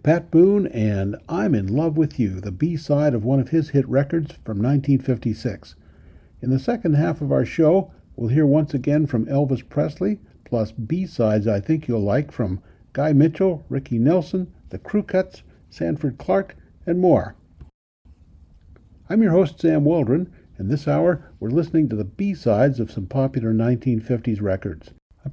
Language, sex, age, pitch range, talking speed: English, male, 60-79, 110-155 Hz, 165 wpm